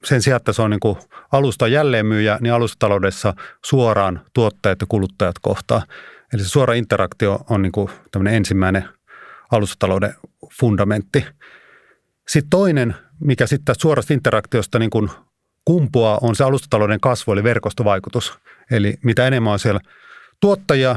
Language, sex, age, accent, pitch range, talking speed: Finnish, male, 30-49, native, 100-130 Hz, 125 wpm